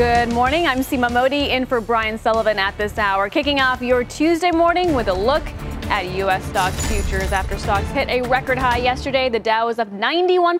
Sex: female